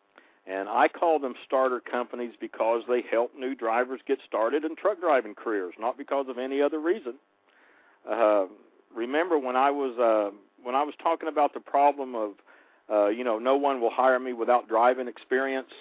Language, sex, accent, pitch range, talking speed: English, male, American, 115-145 Hz, 180 wpm